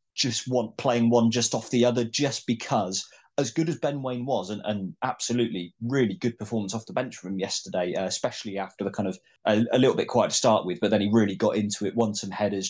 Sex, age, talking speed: male, 20-39, 240 wpm